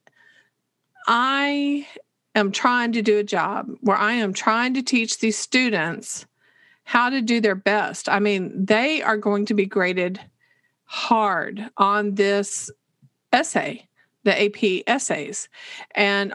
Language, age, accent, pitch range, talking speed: English, 40-59, American, 200-250 Hz, 130 wpm